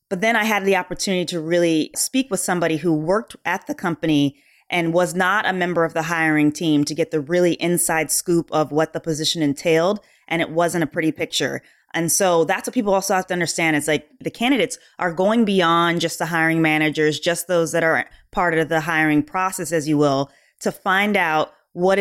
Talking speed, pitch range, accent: 215 wpm, 160-190 Hz, American